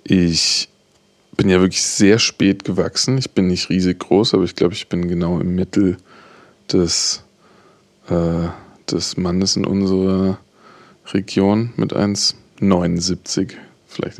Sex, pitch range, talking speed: male, 85-95 Hz, 125 wpm